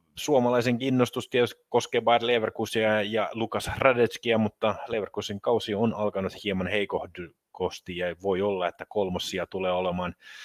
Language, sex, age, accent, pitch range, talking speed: Finnish, male, 30-49, native, 95-120 Hz, 130 wpm